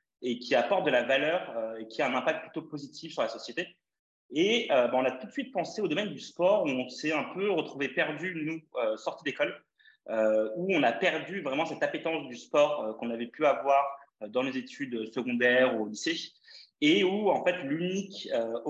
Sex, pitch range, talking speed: male, 115-175 Hz, 225 wpm